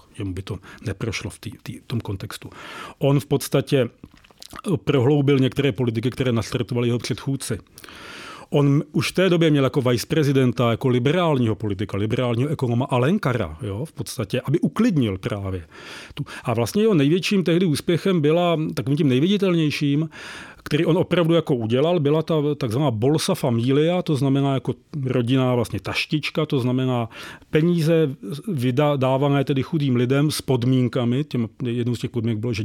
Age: 40-59